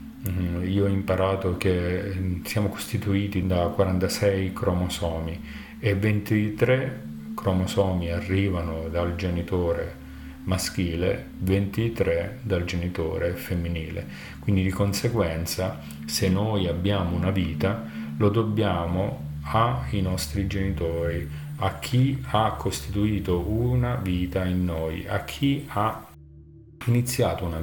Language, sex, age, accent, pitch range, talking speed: Italian, male, 40-59, native, 85-105 Hz, 100 wpm